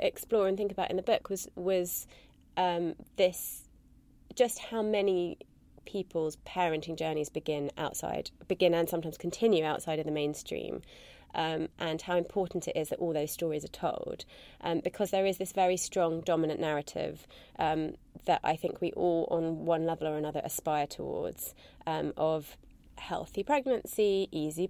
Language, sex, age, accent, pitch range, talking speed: English, female, 30-49, British, 160-200 Hz, 160 wpm